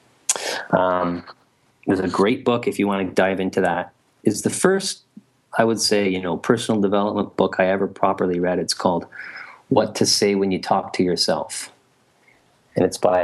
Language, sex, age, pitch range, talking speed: English, male, 30-49, 95-120 Hz, 180 wpm